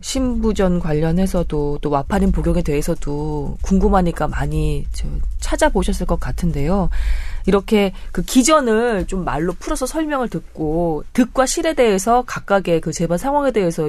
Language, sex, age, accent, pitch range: Korean, female, 20-39, native, 150-220 Hz